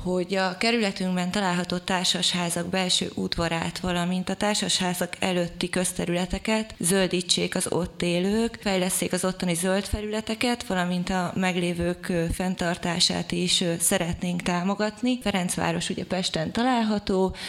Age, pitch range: 20-39, 170-195 Hz